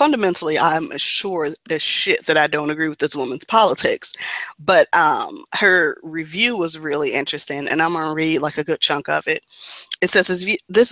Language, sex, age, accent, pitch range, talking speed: English, female, 20-39, American, 155-185 Hz, 185 wpm